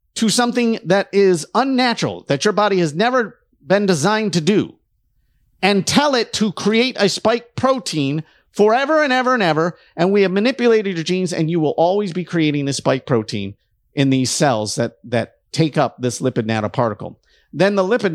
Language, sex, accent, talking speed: English, male, American, 180 wpm